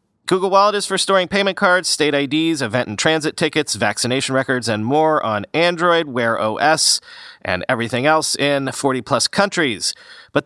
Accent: American